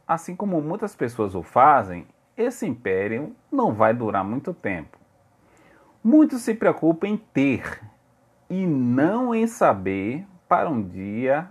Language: Portuguese